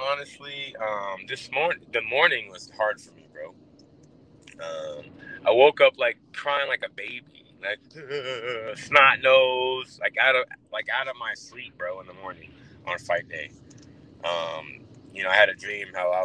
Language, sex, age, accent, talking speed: English, male, 20-39, American, 175 wpm